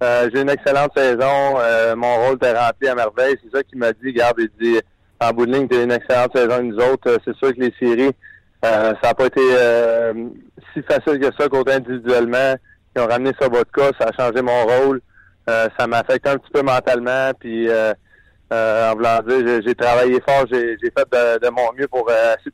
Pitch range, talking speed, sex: 115-135 Hz, 235 wpm, male